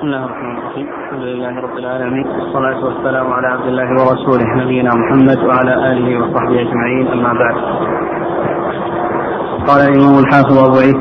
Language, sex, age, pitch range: Arabic, male, 30-49, 135-150 Hz